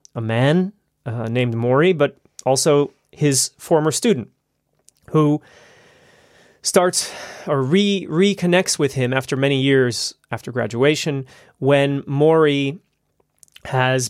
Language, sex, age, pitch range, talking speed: English, male, 30-49, 120-145 Hz, 100 wpm